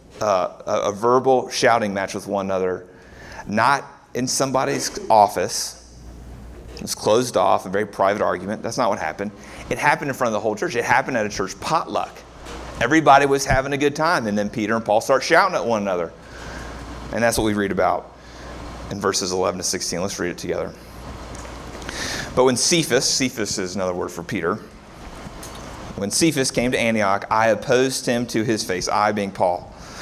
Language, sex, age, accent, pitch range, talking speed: English, male, 30-49, American, 100-135 Hz, 185 wpm